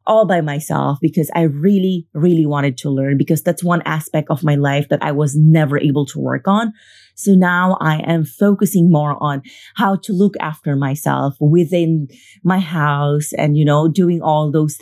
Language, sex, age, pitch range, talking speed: English, female, 30-49, 145-180 Hz, 185 wpm